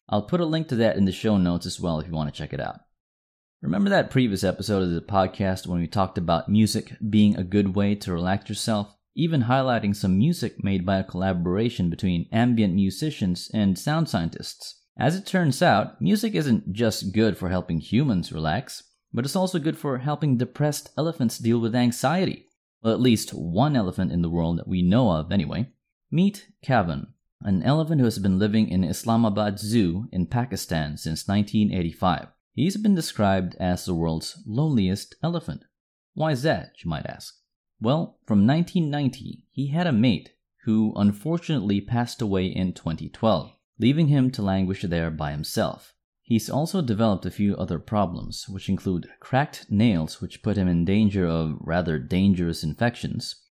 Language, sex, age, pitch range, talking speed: English, male, 30-49, 90-125 Hz, 175 wpm